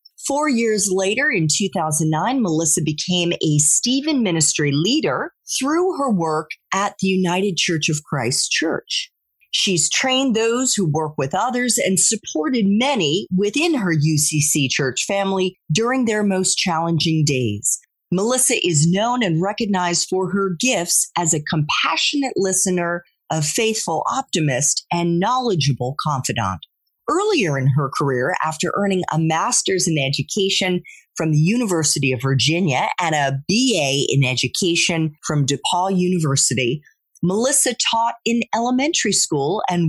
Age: 40-59